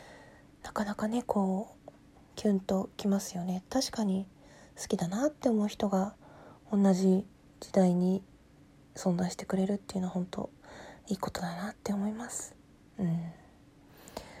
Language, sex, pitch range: Japanese, female, 185-230 Hz